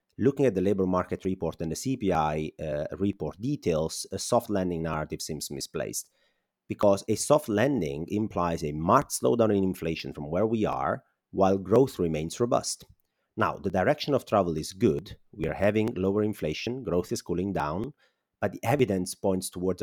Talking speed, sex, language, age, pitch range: 175 wpm, male, English, 30-49, 85-105 Hz